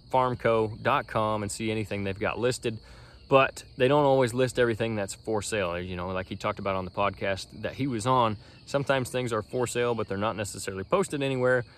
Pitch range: 105-130 Hz